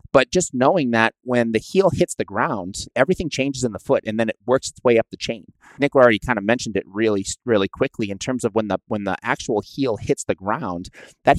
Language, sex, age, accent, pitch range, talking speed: English, male, 30-49, American, 105-130 Hz, 240 wpm